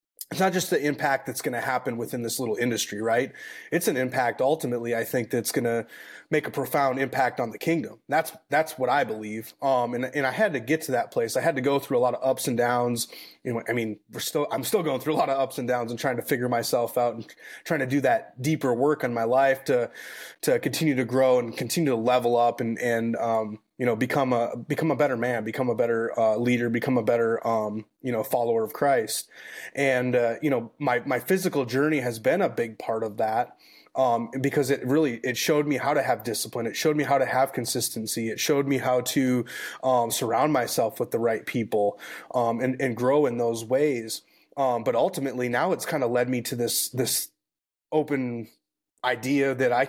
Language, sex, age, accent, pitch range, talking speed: English, male, 30-49, American, 120-140 Hz, 230 wpm